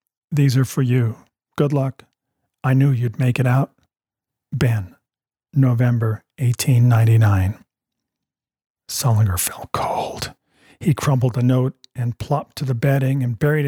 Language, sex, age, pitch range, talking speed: English, male, 50-69, 120-145 Hz, 125 wpm